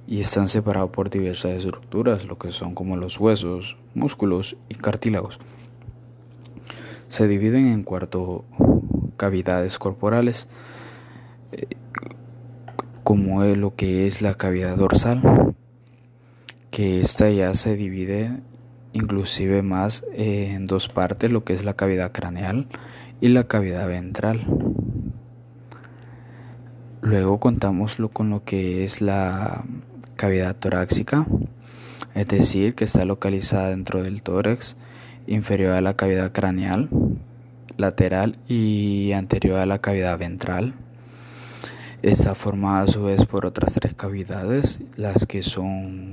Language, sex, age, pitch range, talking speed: Spanish, male, 20-39, 95-120 Hz, 115 wpm